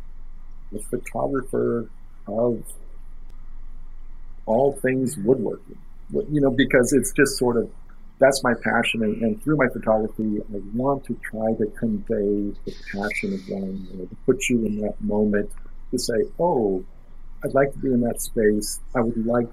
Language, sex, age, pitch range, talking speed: English, male, 50-69, 105-130 Hz, 155 wpm